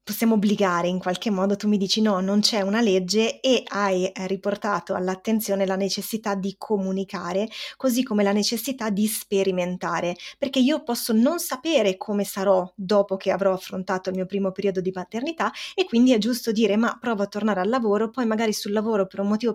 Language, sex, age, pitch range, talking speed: Italian, female, 20-39, 195-240 Hz, 190 wpm